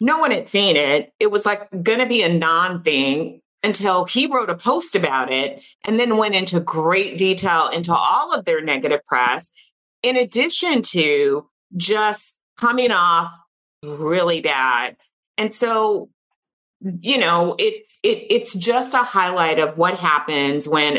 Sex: female